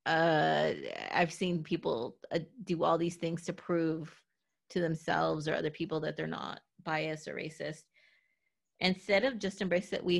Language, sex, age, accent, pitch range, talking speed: English, female, 30-49, American, 155-180 Hz, 165 wpm